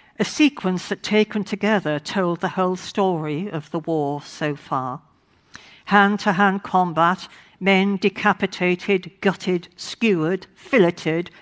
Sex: female